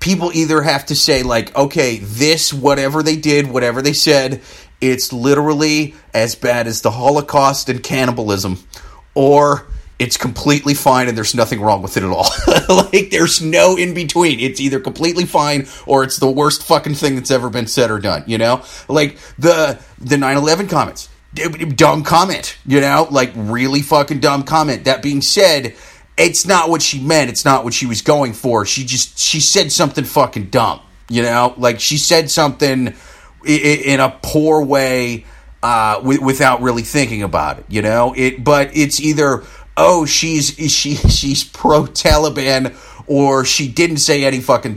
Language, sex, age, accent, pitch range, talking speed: English, male, 30-49, American, 125-155 Hz, 170 wpm